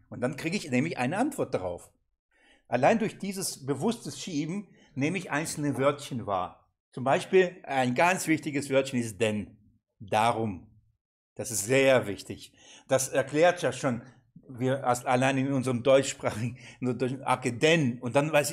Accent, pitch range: German, 125-160 Hz